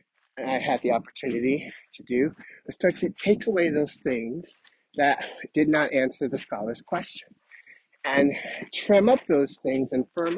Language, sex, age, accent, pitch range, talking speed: English, male, 30-49, American, 135-180 Hz, 155 wpm